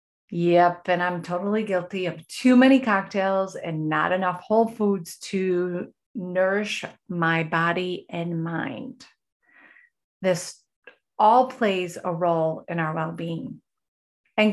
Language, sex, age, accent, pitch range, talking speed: English, female, 30-49, American, 175-225 Hz, 125 wpm